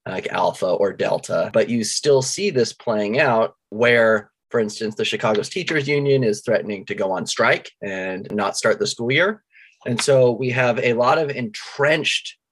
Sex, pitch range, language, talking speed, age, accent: male, 115-145 Hz, English, 180 wpm, 30-49, American